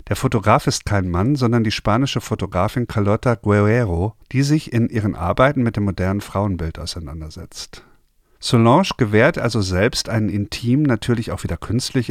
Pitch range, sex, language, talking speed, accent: 95-125 Hz, male, German, 155 wpm, German